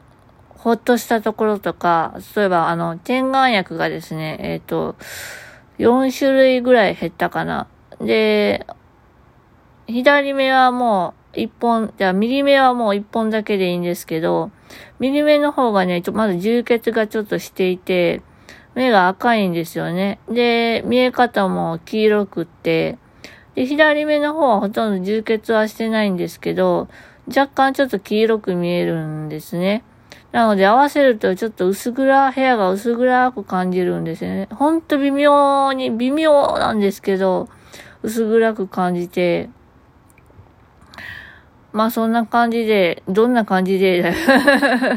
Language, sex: Japanese, female